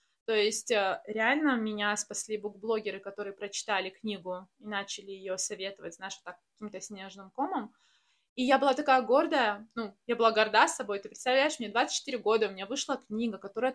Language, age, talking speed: Russian, 20-39, 170 wpm